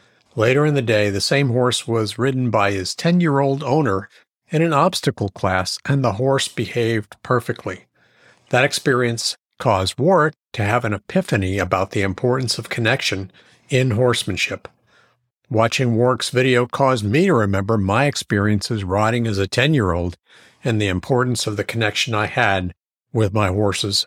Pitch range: 105-130 Hz